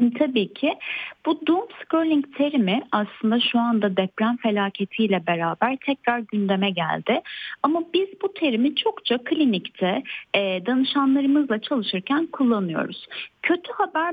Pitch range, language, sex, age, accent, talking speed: 190-305 Hz, Turkish, female, 30-49, native, 110 wpm